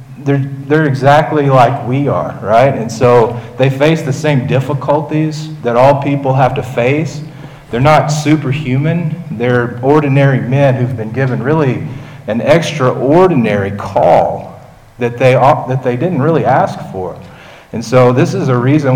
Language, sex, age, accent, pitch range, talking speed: English, male, 40-59, American, 120-150 Hz, 150 wpm